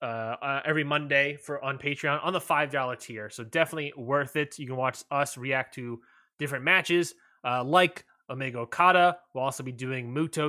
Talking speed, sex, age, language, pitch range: 185 wpm, male, 20-39, English, 125-160 Hz